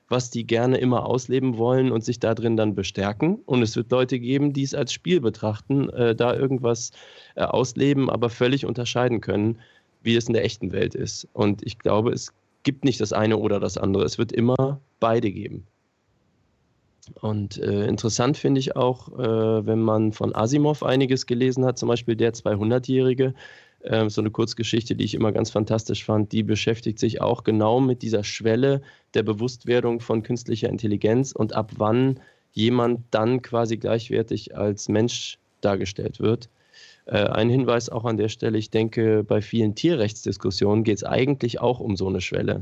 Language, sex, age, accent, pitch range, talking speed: German, male, 20-39, German, 110-125 Hz, 175 wpm